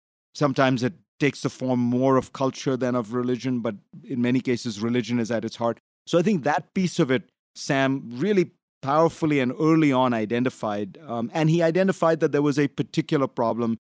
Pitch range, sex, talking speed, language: 115-145 Hz, male, 190 wpm, English